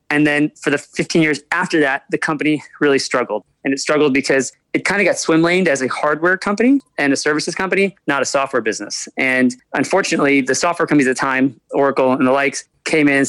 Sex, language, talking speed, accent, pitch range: male, English, 215 wpm, American, 135-160 Hz